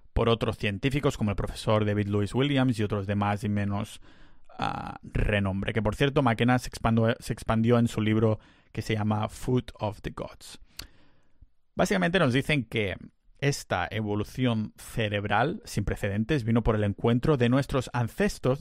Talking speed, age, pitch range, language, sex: 160 wpm, 30-49, 105-125 Hz, Spanish, male